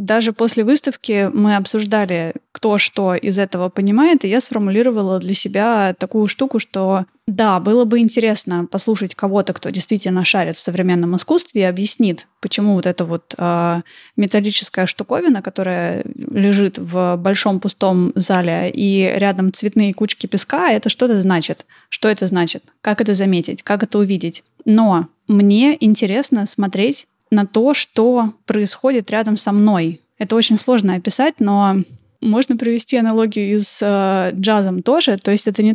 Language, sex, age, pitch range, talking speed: Russian, female, 20-39, 190-230 Hz, 150 wpm